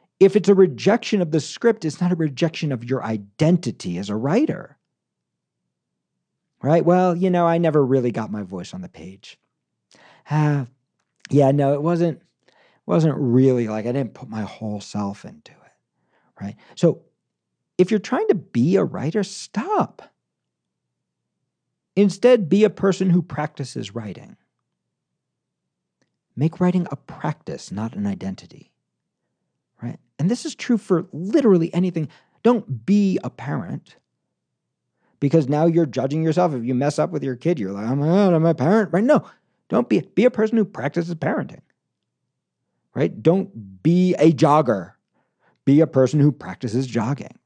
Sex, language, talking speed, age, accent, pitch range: male, English, 150 wpm, 50-69, American, 125-185 Hz